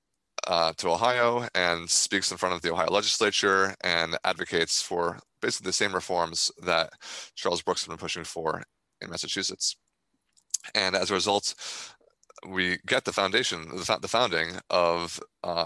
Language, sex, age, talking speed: English, male, 20-39, 150 wpm